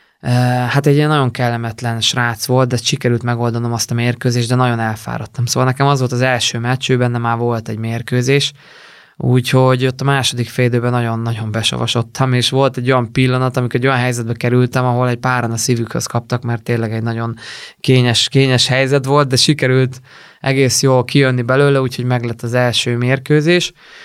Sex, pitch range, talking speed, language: male, 115-130 Hz, 175 wpm, Hungarian